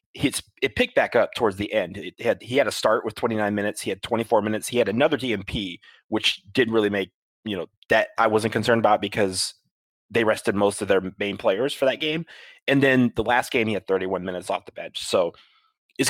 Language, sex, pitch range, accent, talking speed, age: English, male, 100-130 Hz, American, 225 wpm, 30-49